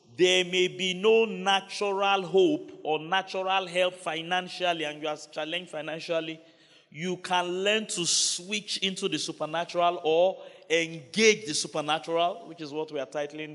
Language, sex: English, male